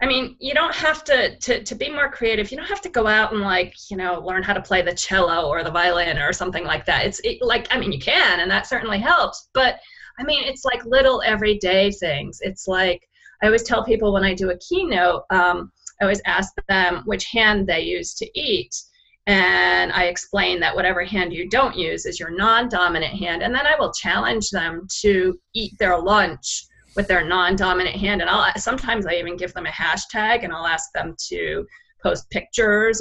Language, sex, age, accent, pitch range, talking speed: English, female, 30-49, American, 180-235 Hz, 215 wpm